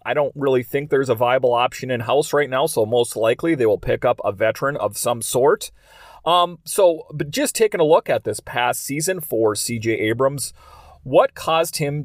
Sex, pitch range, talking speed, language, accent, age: male, 120-155 Hz, 195 wpm, English, American, 30-49